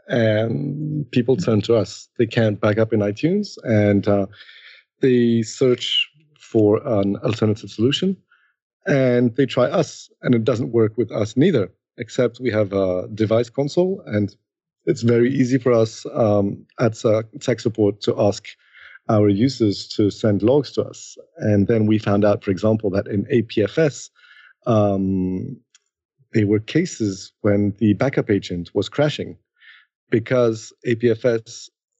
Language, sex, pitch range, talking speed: English, male, 105-125 Hz, 145 wpm